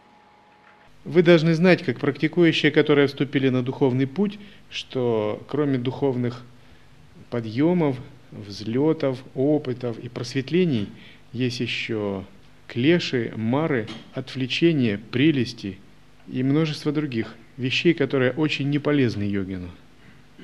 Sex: male